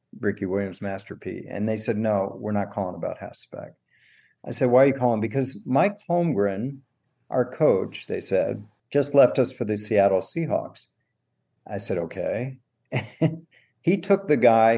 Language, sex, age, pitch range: English, male, 50-69, 100-135 Hz